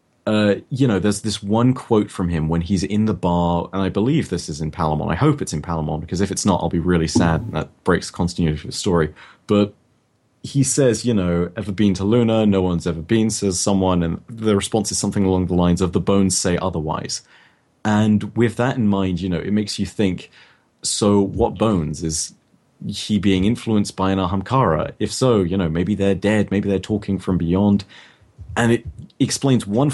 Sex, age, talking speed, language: male, 30-49, 215 wpm, English